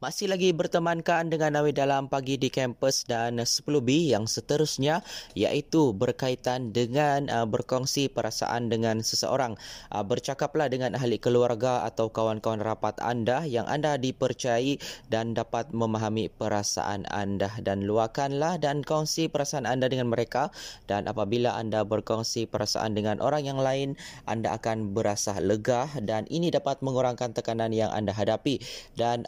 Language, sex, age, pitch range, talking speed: Malay, male, 20-39, 110-135 Hz, 135 wpm